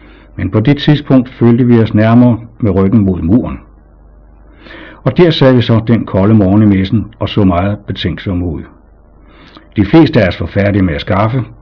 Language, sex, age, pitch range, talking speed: Danish, male, 60-79, 85-120 Hz, 180 wpm